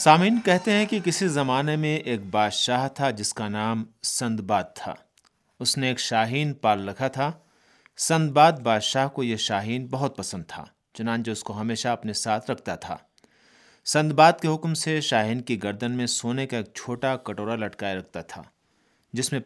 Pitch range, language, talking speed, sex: 110-150 Hz, Urdu, 175 wpm, male